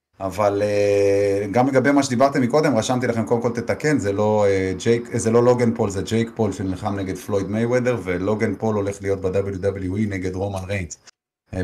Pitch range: 105-140 Hz